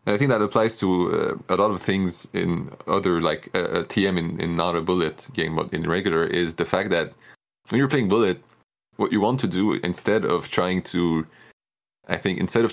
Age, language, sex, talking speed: 20-39, English, male, 215 wpm